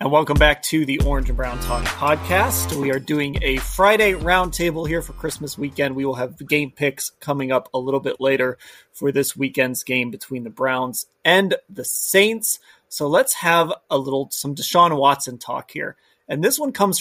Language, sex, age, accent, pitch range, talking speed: English, male, 30-49, American, 130-175 Hz, 195 wpm